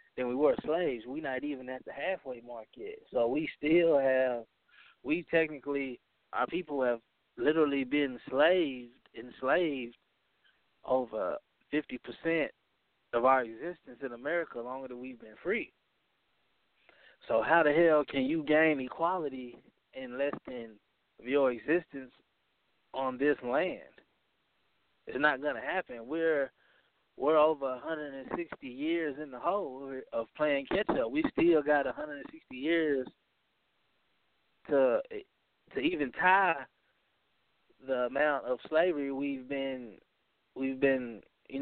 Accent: American